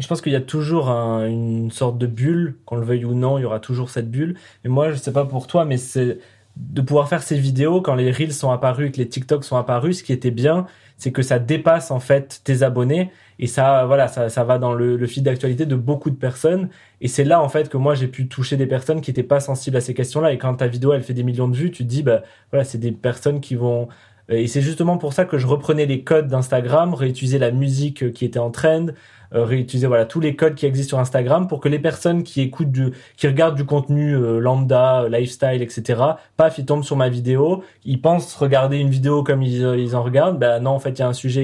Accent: French